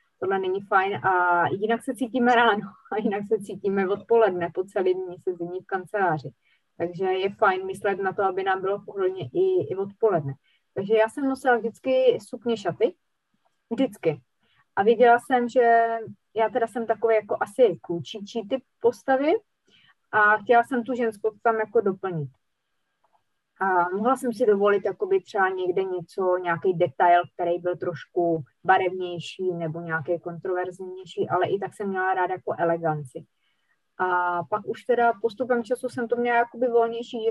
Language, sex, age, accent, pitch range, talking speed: Czech, female, 20-39, native, 180-230 Hz, 155 wpm